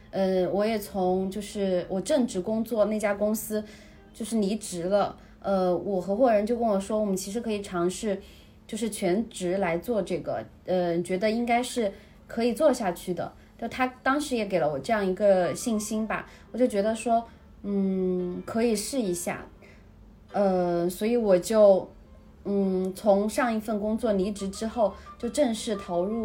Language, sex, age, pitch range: Chinese, female, 30-49, 180-220 Hz